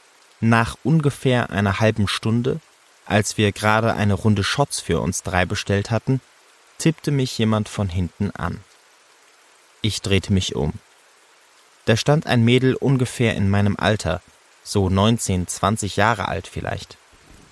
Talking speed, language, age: 135 wpm, German, 30-49